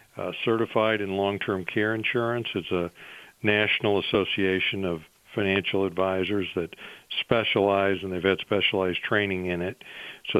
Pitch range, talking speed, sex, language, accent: 95-115 Hz, 135 wpm, male, English, American